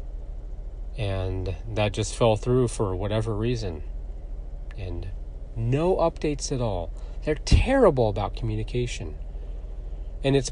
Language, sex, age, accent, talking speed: English, male, 40-59, American, 110 wpm